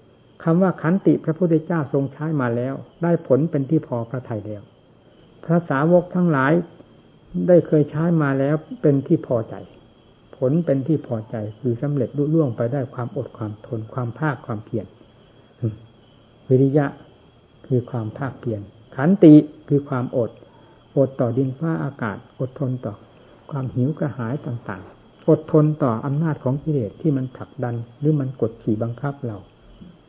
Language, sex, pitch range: English, male, 120-150 Hz